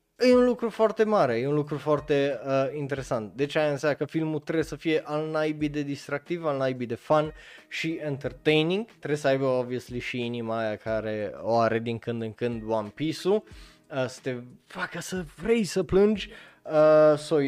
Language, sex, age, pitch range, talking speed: Romanian, male, 20-39, 125-160 Hz, 190 wpm